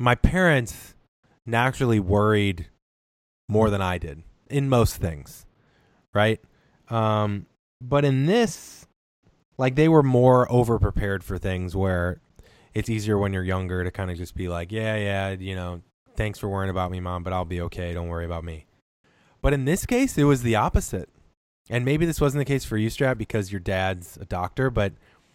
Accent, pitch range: American, 95-130 Hz